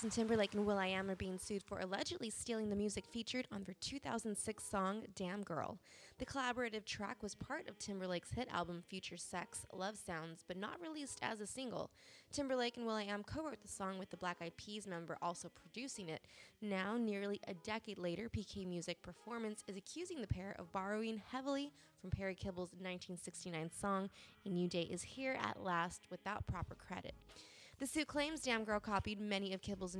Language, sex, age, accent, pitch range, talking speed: English, female, 20-39, American, 180-225 Hz, 195 wpm